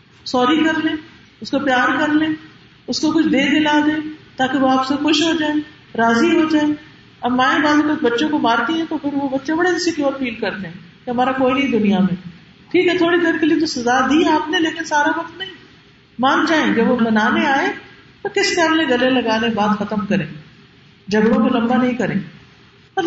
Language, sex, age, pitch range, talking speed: Urdu, female, 50-69, 195-310 Hz, 215 wpm